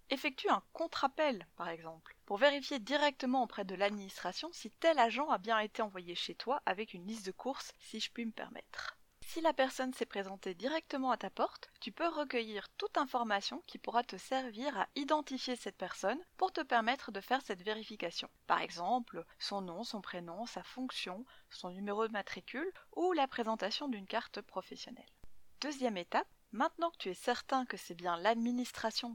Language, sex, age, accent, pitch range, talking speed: French, female, 20-39, French, 205-285 Hz, 180 wpm